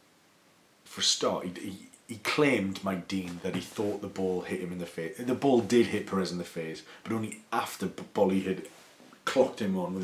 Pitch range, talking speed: 90-125 Hz, 210 wpm